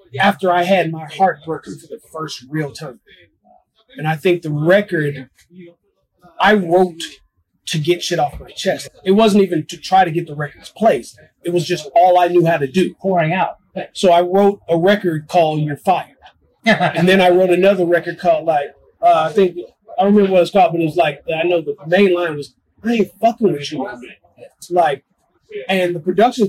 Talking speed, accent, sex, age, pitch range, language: 205 wpm, American, male, 30-49, 165-210 Hz, English